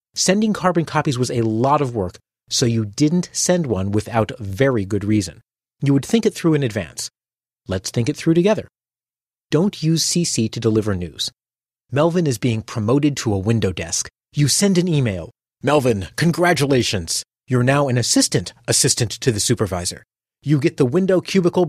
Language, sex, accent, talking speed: English, male, American, 170 wpm